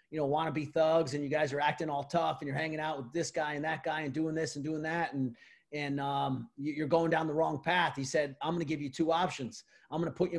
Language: English